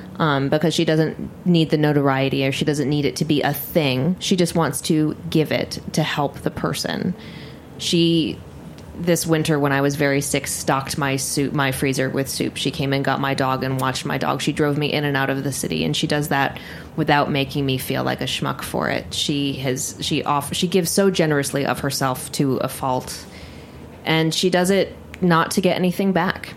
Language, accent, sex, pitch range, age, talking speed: English, American, female, 140-160 Hz, 20-39, 210 wpm